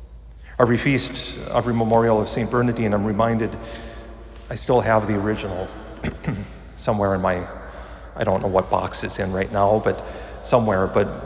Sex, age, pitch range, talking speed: male, 40-59, 65-110 Hz, 155 wpm